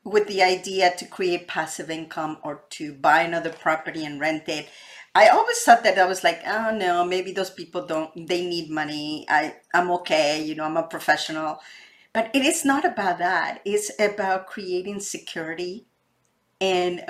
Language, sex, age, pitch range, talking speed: English, female, 40-59, 175-225 Hz, 175 wpm